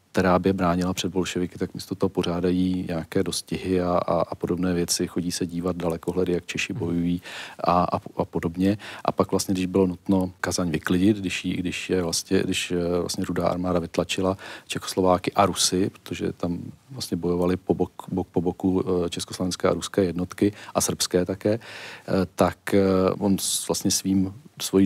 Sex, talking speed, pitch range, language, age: male, 165 wpm, 90-95 Hz, Czech, 40-59